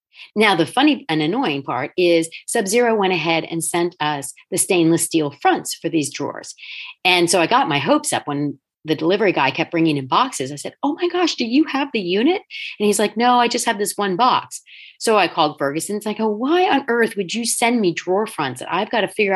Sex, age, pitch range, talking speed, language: female, 40-59, 160-220 Hz, 235 wpm, English